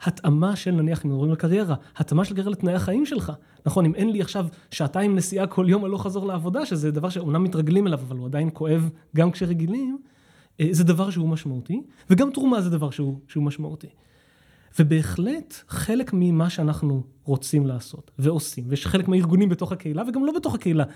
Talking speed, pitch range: 185 wpm, 155-195 Hz